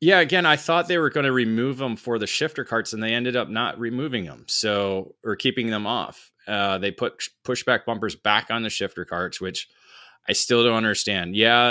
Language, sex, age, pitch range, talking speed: English, male, 20-39, 95-115 Hz, 215 wpm